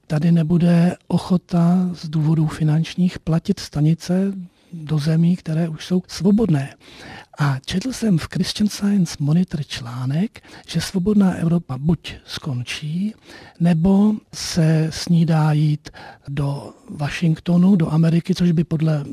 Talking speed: 120 wpm